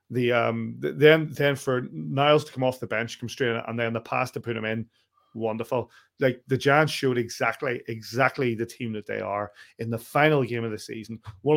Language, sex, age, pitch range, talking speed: English, male, 30-49, 110-130 Hz, 215 wpm